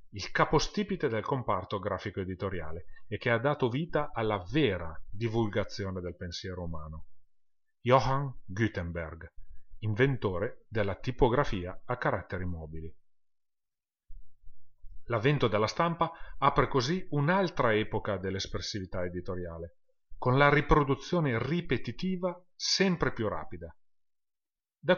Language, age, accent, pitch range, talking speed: Italian, 40-59, native, 95-140 Hz, 100 wpm